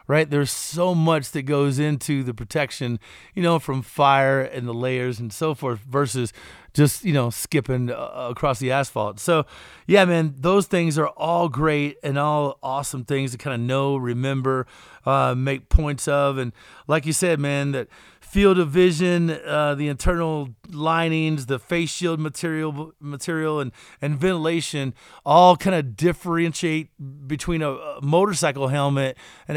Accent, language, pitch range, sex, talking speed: American, English, 135-160 Hz, male, 160 wpm